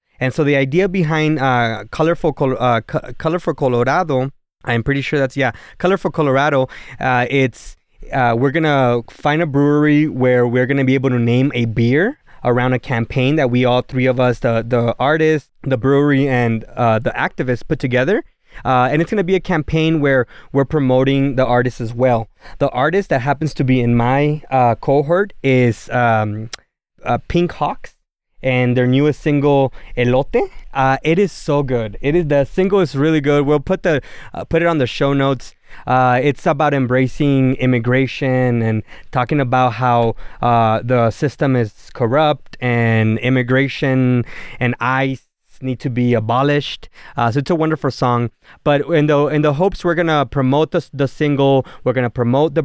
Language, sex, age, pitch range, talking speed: English, male, 20-39, 125-145 Hz, 185 wpm